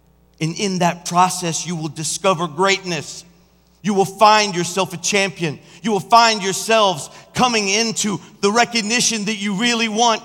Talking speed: 150 wpm